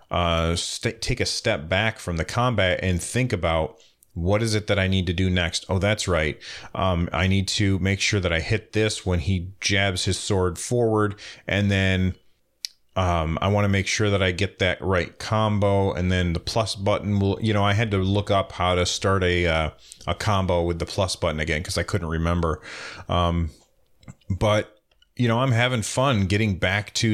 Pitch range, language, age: 85-105 Hz, English, 30-49